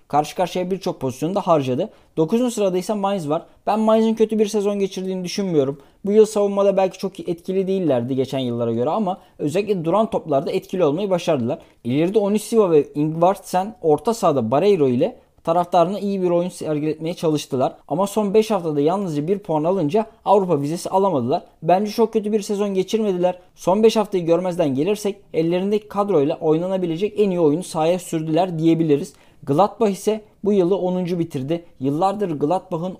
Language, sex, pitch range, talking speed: Turkish, male, 155-195 Hz, 155 wpm